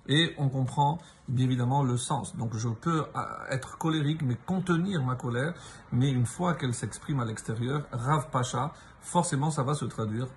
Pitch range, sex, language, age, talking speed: 125-160 Hz, male, French, 50-69, 185 wpm